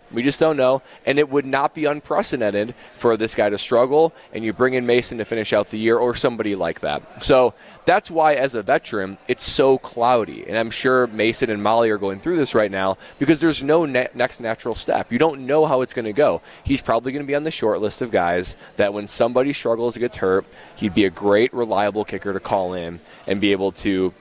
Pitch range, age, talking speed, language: 105-150 Hz, 20-39, 235 wpm, English